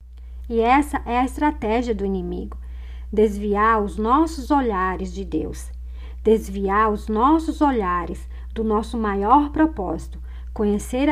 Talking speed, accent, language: 120 wpm, Brazilian, Portuguese